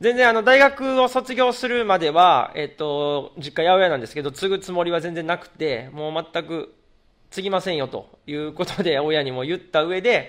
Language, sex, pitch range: Japanese, male, 125-170 Hz